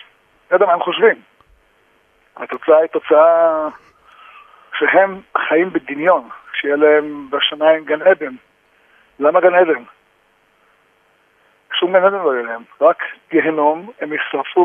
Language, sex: Hebrew, male